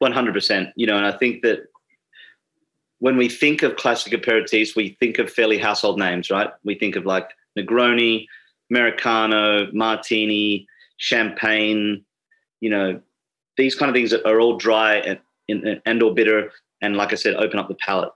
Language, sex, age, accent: English, male, 30-49, Australian